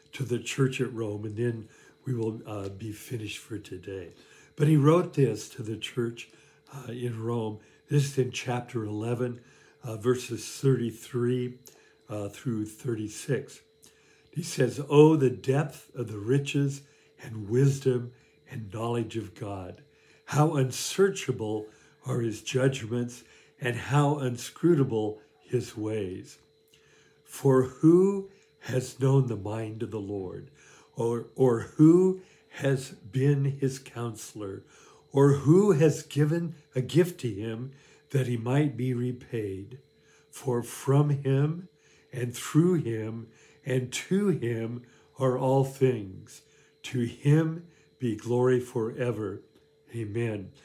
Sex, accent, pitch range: male, American, 115-145 Hz